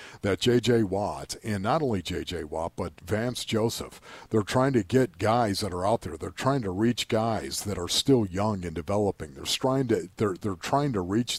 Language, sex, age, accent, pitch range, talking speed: English, male, 50-69, American, 100-130 Hz, 215 wpm